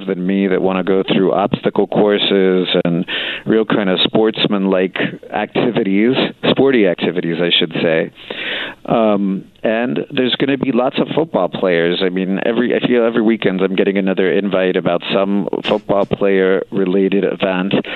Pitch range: 90-100 Hz